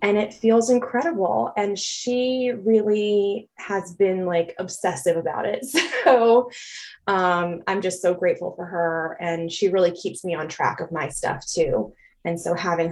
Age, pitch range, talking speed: 20-39, 170-205 Hz, 165 wpm